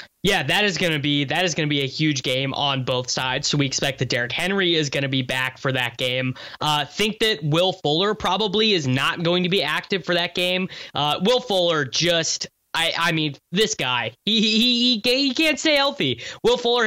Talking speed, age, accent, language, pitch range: 230 wpm, 10-29, American, English, 140-175 Hz